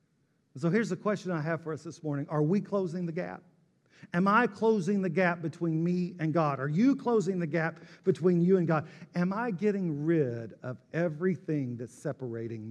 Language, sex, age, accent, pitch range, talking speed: English, male, 50-69, American, 155-195 Hz, 195 wpm